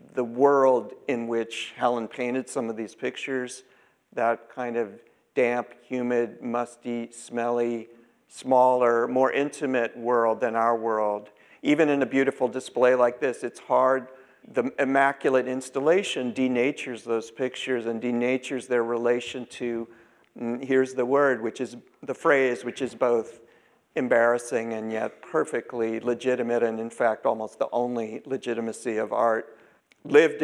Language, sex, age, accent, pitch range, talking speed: English, male, 50-69, American, 115-130 Hz, 135 wpm